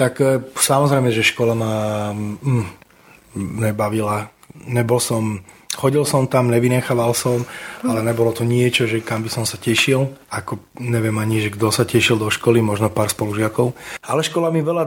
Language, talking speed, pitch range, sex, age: Slovak, 160 wpm, 110-125 Hz, male, 20-39